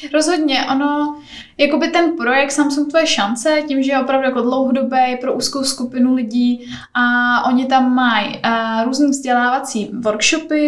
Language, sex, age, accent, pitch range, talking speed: Czech, female, 10-29, native, 230-255 Hz, 140 wpm